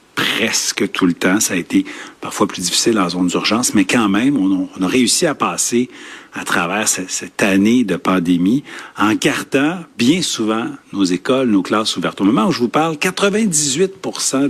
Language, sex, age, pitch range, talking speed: French, male, 50-69, 105-160 Hz, 180 wpm